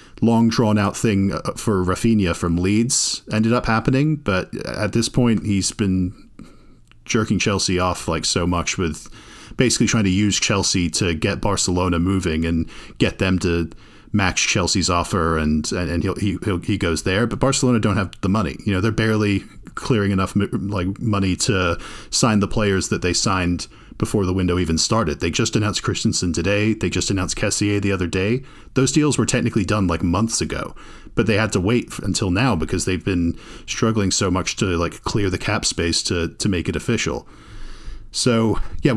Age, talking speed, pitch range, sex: 40-59, 185 wpm, 95-115 Hz, male